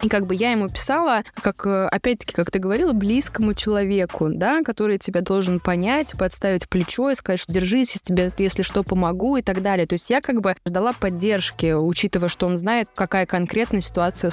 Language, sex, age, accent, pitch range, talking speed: Russian, female, 20-39, native, 180-220 Hz, 190 wpm